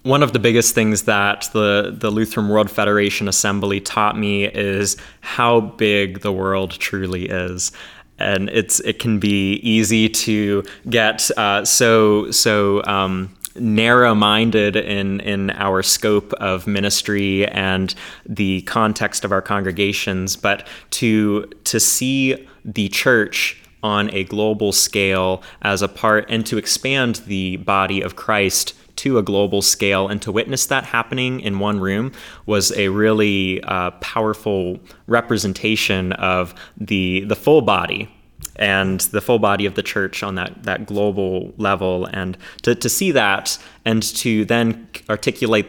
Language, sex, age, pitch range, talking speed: English, male, 20-39, 95-110 Hz, 145 wpm